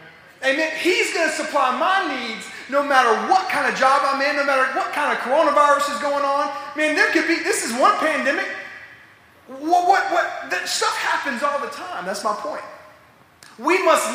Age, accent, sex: 30-49, American, male